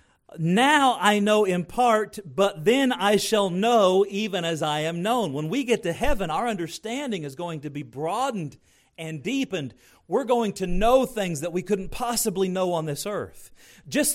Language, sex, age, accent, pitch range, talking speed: English, male, 40-59, American, 125-205 Hz, 180 wpm